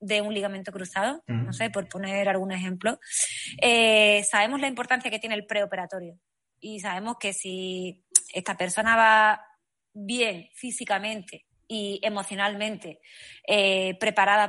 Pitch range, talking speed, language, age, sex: 200-230 Hz, 130 wpm, Spanish, 20-39, female